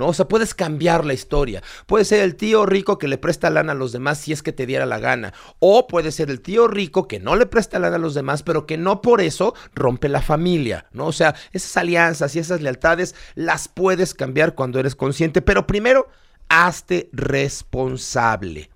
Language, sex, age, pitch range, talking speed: Spanish, male, 40-59, 140-200 Hz, 210 wpm